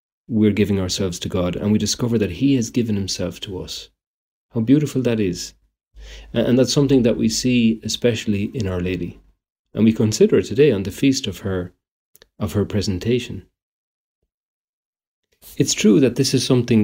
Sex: male